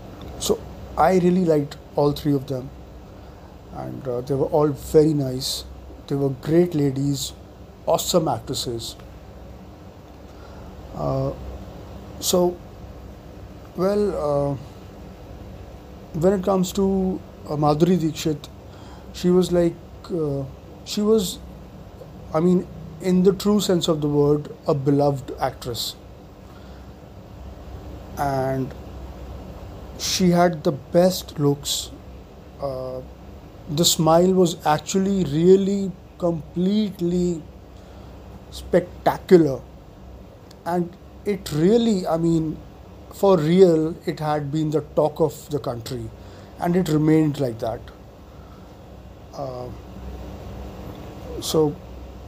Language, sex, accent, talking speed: English, male, Indian, 100 wpm